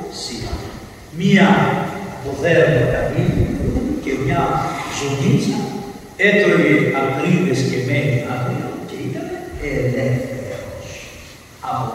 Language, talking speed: Greek, 75 wpm